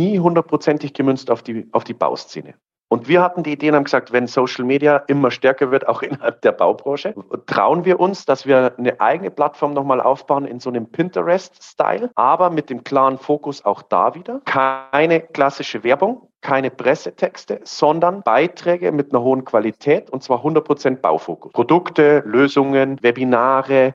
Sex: male